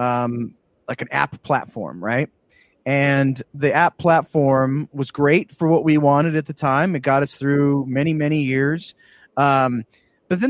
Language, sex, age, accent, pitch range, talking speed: English, male, 30-49, American, 135-165 Hz, 165 wpm